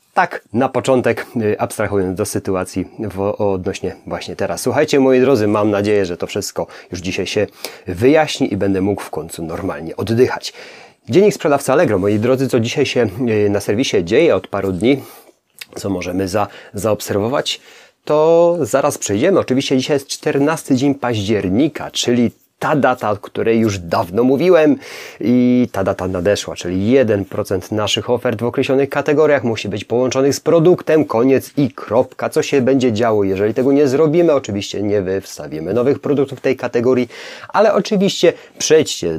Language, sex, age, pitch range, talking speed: Polish, male, 30-49, 100-135 Hz, 155 wpm